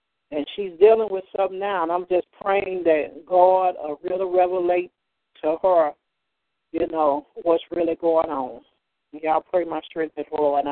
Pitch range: 155-180 Hz